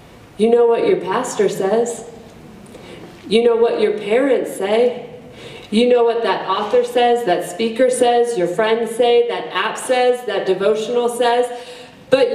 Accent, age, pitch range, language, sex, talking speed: American, 40-59, 180-245 Hz, English, female, 150 wpm